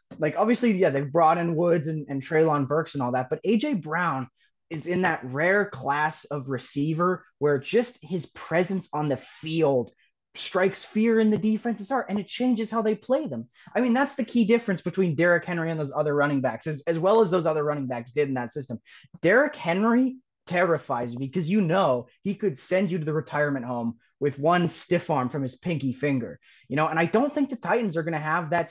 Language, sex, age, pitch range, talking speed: English, male, 20-39, 150-220 Hz, 220 wpm